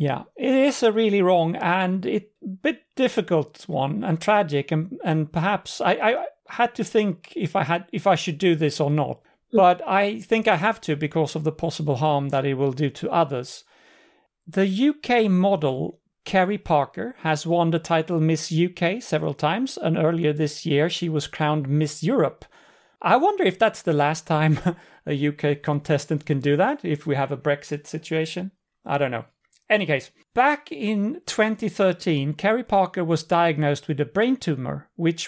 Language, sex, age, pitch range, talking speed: English, male, 40-59, 145-190 Hz, 180 wpm